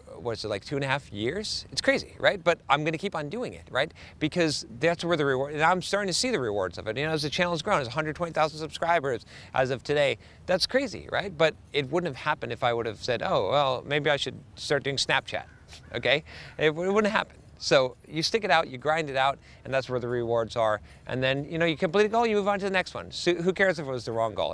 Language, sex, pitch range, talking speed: English, male, 130-170 Hz, 275 wpm